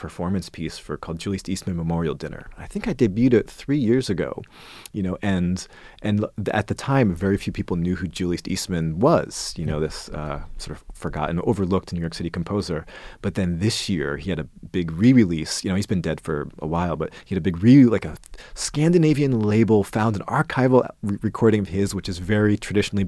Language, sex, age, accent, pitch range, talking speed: English, male, 30-49, American, 85-105 Hz, 210 wpm